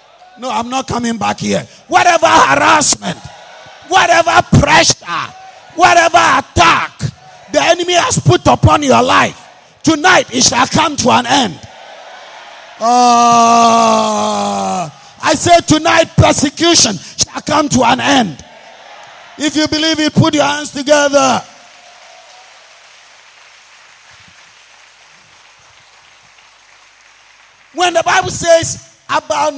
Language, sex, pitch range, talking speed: English, male, 265-340 Hz, 100 wpm